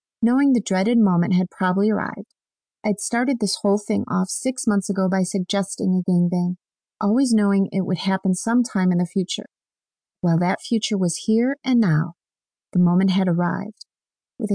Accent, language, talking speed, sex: American, English, 175 wpm, female